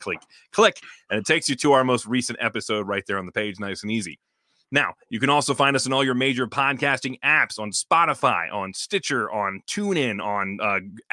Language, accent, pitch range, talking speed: English, American, 110-145 Hz, 210 wpm